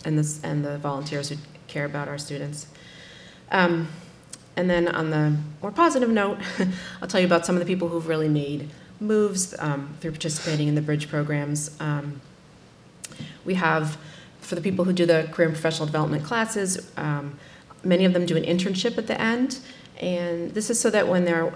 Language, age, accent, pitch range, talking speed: English, 30-49, American, 150-185 Hz, 185 wpm